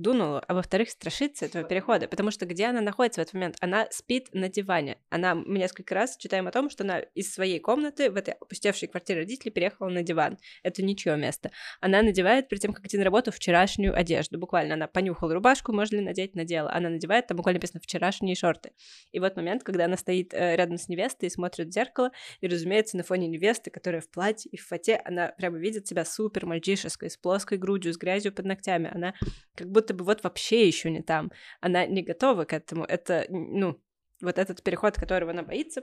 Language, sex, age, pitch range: Russian, female, 20-39, 175-215 Hz